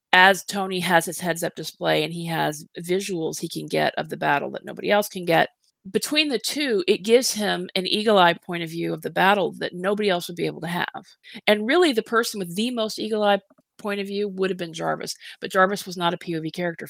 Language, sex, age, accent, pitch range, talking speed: English, female, 40-59, American, 170-210 Hz, 240 wpm